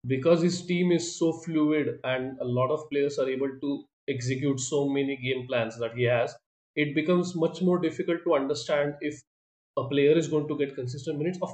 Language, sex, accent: English, male, Indian